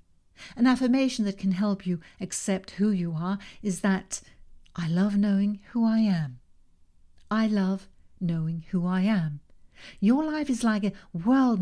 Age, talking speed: 60-79, 155 wpm